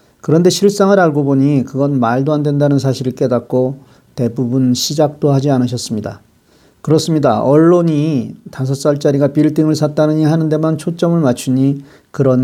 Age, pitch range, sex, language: 40-59, 130-155 Hz, male, Korean